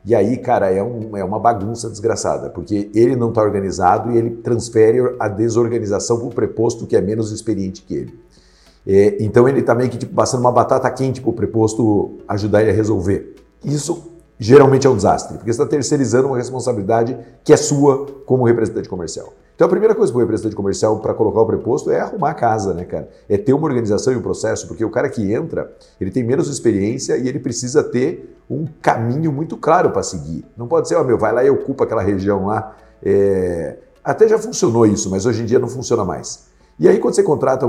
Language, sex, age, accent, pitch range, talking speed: Portuguese, male, 50-69, Brazilian, 110-135 Hz, 220 wpm